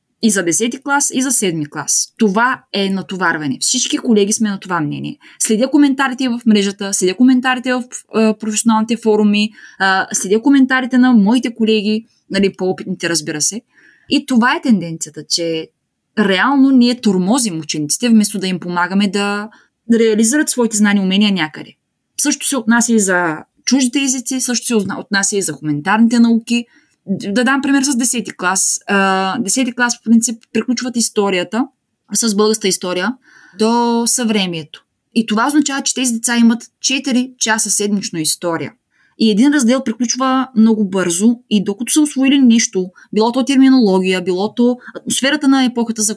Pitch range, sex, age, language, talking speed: 200-255 Hz, female, 20-39, Bulgarian, 150 wpm